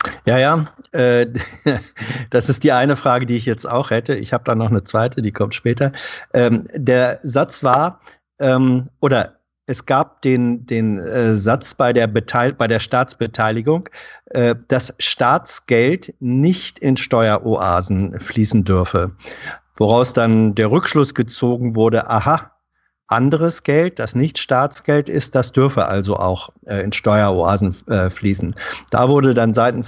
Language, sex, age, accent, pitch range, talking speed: German, male, 50-69, German, 110-140 Hz, 150 wpm